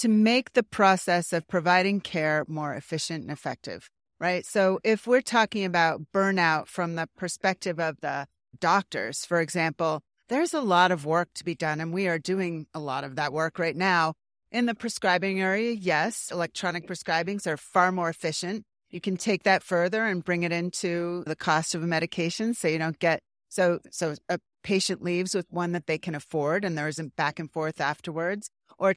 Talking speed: 195 wpm